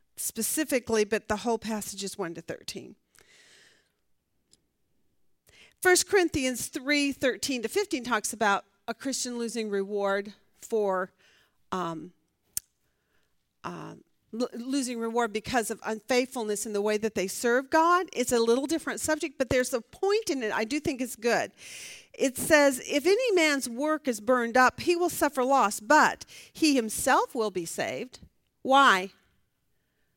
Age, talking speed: 40-59, 140 wpm